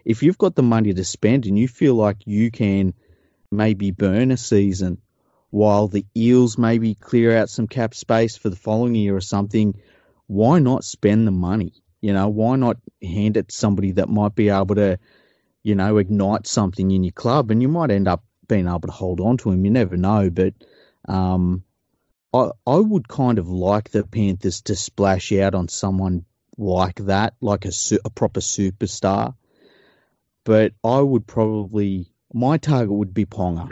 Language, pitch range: English, 95-115 Hz